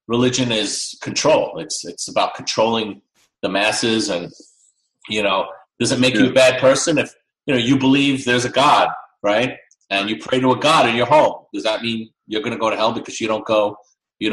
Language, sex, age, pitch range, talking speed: English, male, 30-49, 115-160 Hz, 215 wpm